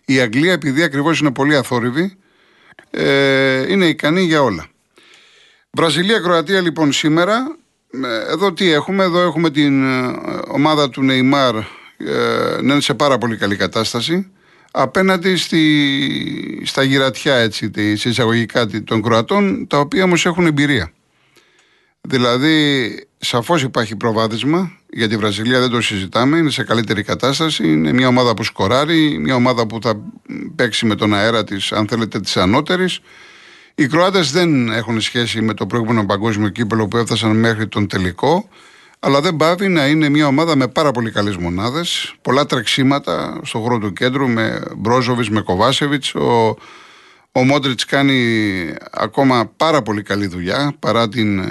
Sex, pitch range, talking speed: male, 115-160 Hz, 140 wpm